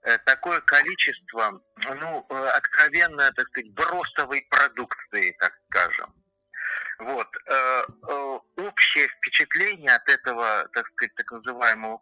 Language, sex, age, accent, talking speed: Russian, male, 50-69, native, 90 wpm